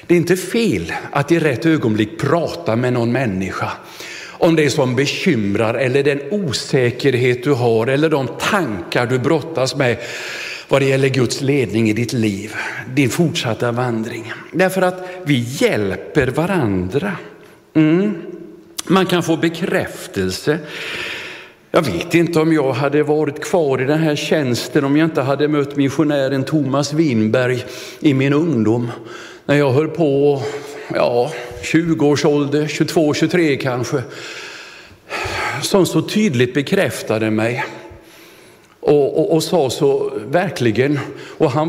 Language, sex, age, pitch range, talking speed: Swedish, male, 50-69, 120-160 Hz, 135 wpm